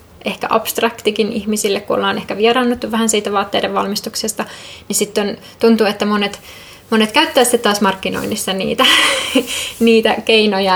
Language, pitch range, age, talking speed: Finnish, 200-225 Hz, 20-39, 140 wpm